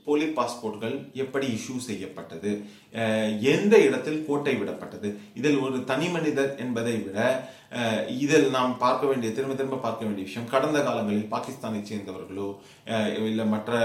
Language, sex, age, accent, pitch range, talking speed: Tamil, male, 30-49, native, 105-130 Hz, 85 wpm